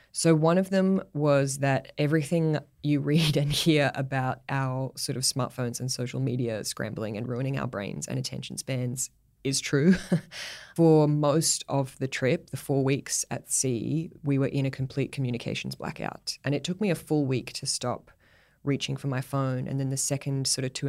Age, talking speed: 20-39, 190 wpm